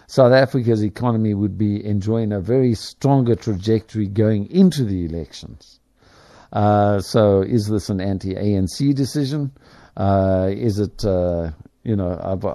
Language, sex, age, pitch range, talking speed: English, male, 50-69, 95-120 Hz, 135 wpm